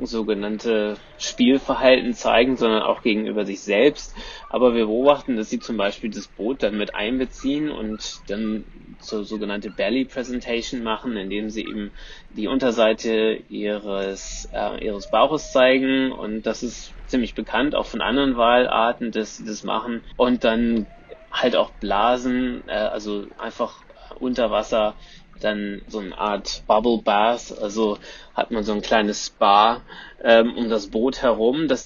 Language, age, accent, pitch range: German, 20-39, German, 110-125 Hz